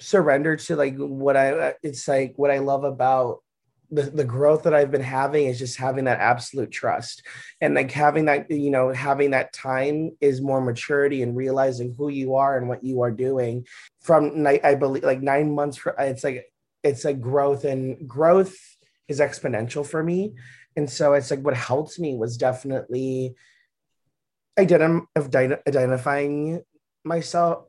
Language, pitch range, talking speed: English, 130-150 Hz, 165 wpm